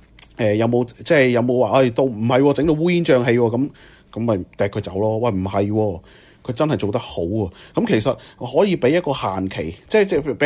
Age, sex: 30-49, male